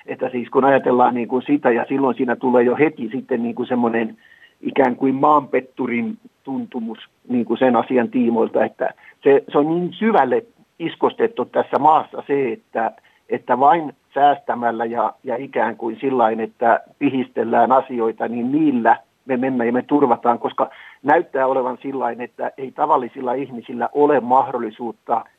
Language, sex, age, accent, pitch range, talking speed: Finnish, male, 50-69, native, 120-140 Hz, 130 wpm